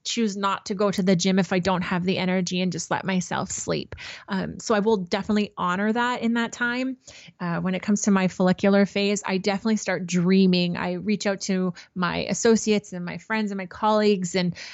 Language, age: English, 20-39